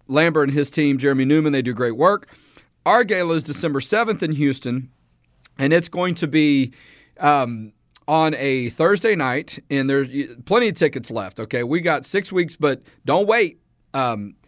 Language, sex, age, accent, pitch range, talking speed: English, male, 40-59, American, 135-175 Hz, 175 wpm